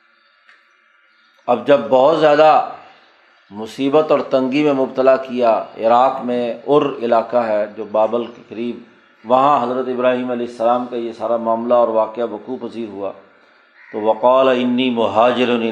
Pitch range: 120-140 Hz